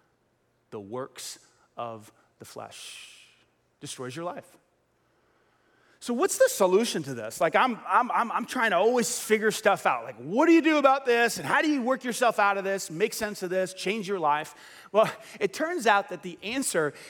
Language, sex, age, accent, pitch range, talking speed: English, male, 30-49, American, 170-245 Hz, 190 wpm